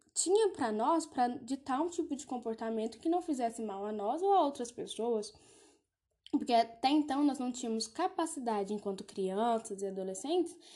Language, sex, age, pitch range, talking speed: Portuguese, female, 10-29, 220-300 Hz, 165 wpm